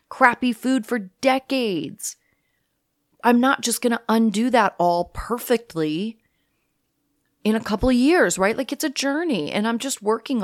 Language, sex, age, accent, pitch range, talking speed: English, female, 30-49, American, 170-235 Hz, 155 wpm